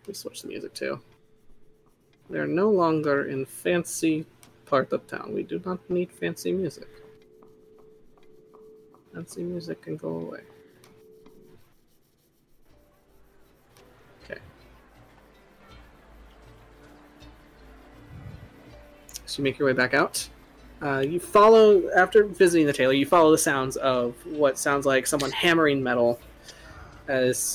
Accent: American